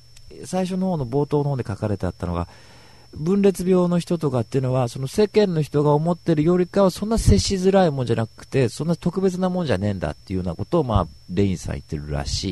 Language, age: Japanese, 40-59